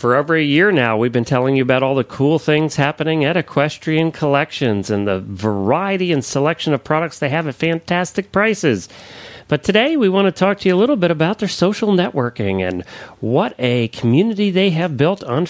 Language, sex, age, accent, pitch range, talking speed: English, male, 40-59, American, 120-180 Hz, 205 wpm